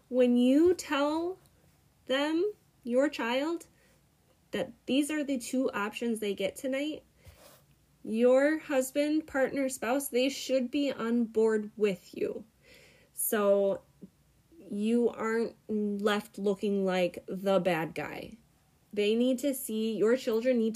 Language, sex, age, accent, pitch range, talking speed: English, female, 20-39, American, 185-260 Hz, 120 wpm